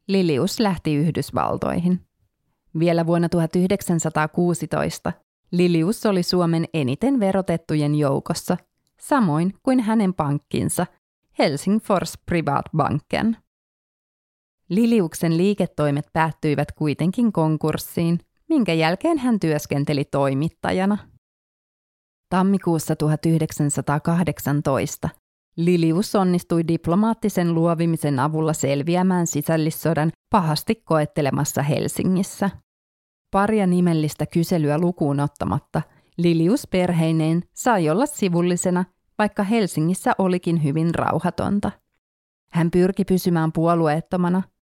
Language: Finnish